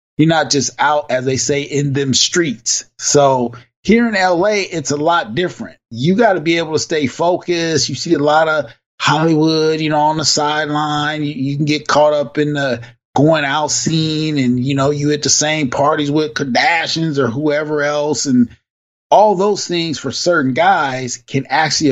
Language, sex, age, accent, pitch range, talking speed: English, male, 30-49, American, 130-160 Hz, 185 wpm